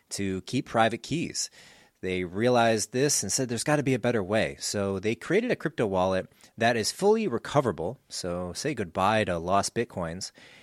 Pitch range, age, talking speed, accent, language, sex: 95-125 Hz, 30-49, 180 wpm, American, English, male